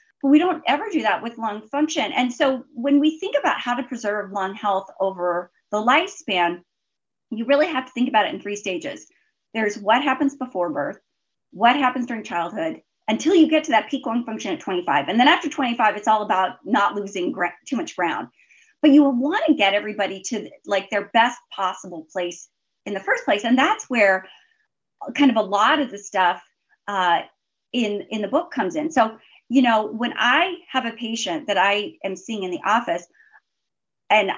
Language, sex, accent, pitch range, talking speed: English, female, American, 200-270 Hz, 195 wpm